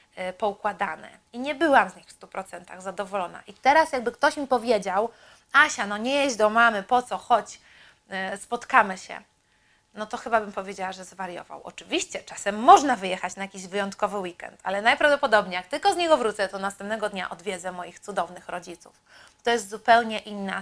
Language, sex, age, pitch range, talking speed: Polish, female, 30-49, 195-250 Hz, 170 wpm